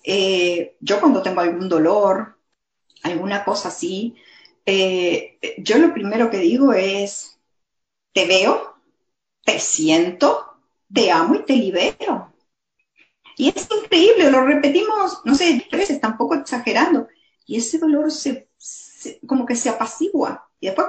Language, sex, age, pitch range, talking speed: Spanish, female, 50-69, 205-310 Hz, 135 wpm